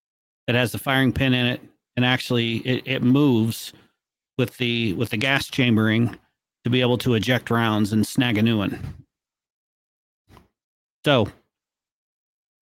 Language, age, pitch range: English, 40-59, 115-140 Hz